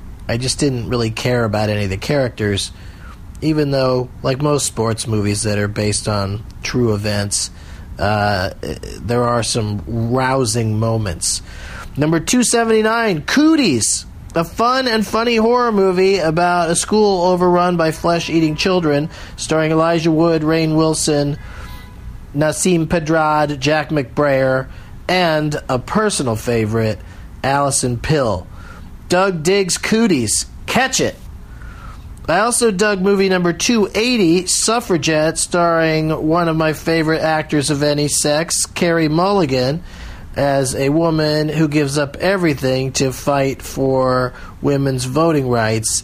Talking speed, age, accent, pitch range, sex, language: 125 wpm, 40-59, American, 115-165 Hz, male, English